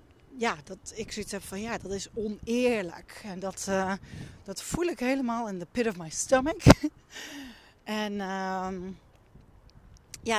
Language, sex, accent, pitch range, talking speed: Dutch, female, Dutch, 205-250 Hz, 140 wpm